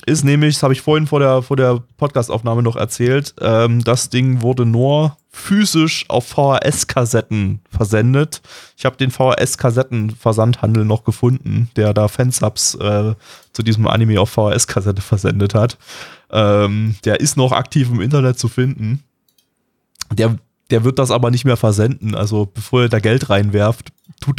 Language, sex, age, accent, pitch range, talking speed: German, male, 20-39, German, 105-130 Hz, 155 wpm